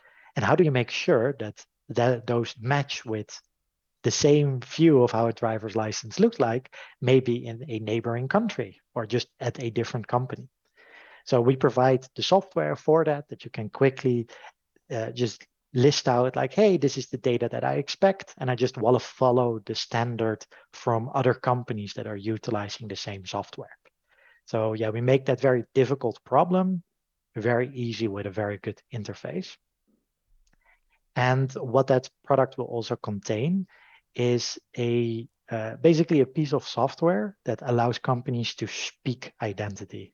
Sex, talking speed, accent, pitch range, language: male, 160 wpm, Dutch, 115-145 Hz, English